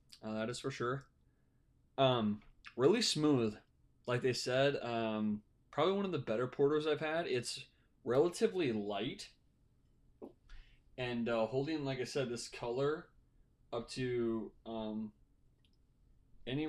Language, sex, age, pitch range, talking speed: English, male, 20-39, 115-150 Hz, 125 wpm